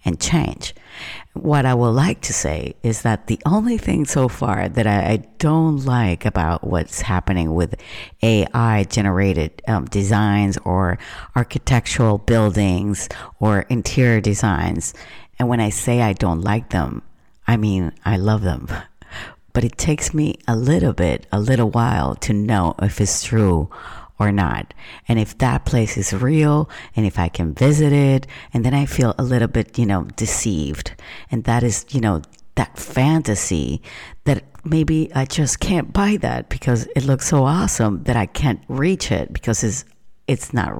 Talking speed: 165 wpm